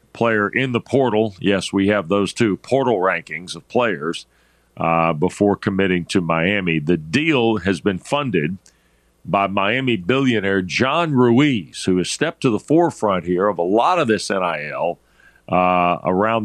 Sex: male